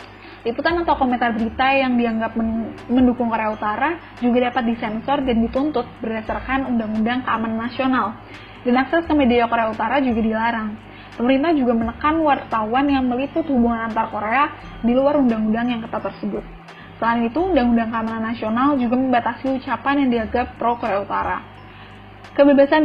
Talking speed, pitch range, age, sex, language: 145 wpm, 225-275 Hz, 10-29, female, English